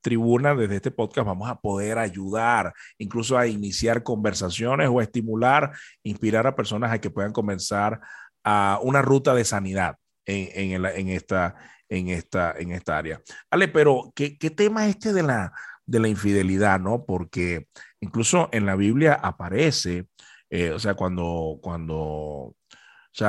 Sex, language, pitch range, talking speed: male, Spanish, 95-135 Hz, 160 wpm